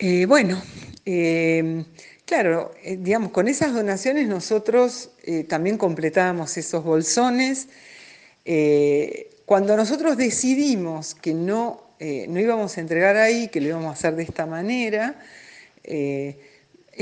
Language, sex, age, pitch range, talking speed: Spanish, female, 50-69, 160-235 Hz, 125 wpm